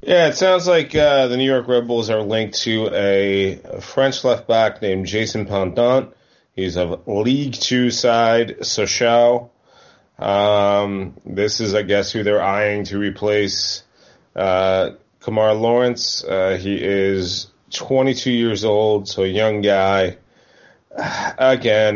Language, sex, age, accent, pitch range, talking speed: English, male, 30-49, American, 95-120 Hz, 135 wpm